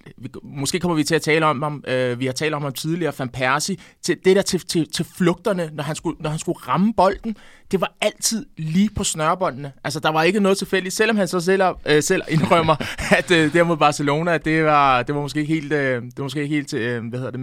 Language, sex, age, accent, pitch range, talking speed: Danish, male, 20-39, native, 140-175 Hz, 250 wpm